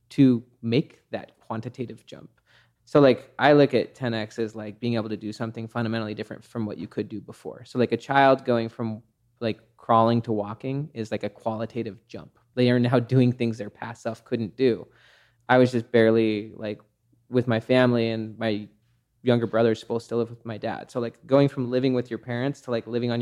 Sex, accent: male, American